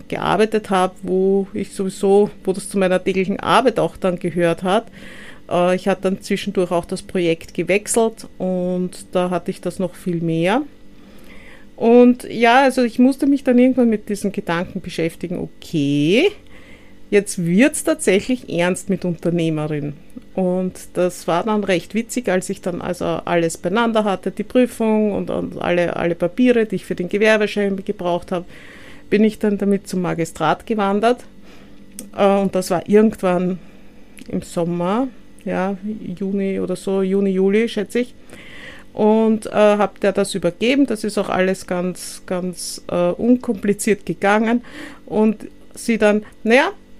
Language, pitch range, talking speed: German, 185-235 Hz, 150 wpm